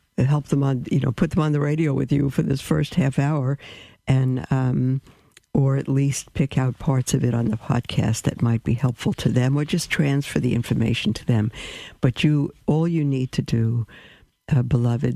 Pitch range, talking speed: 125-145 Hz, 205 wpm